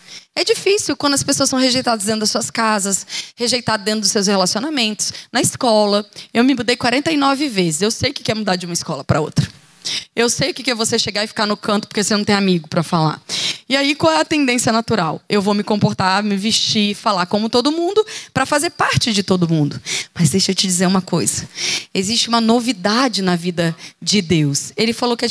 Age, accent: 20-39, Brazilian